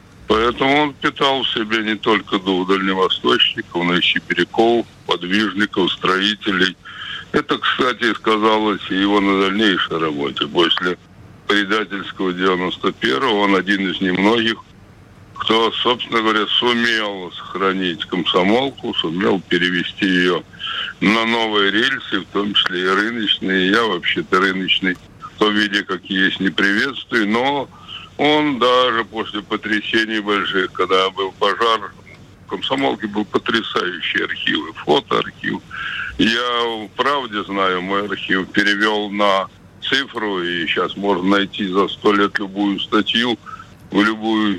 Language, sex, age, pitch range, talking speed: Russian, male, 60-79, 95-110 Hz, 120 wpm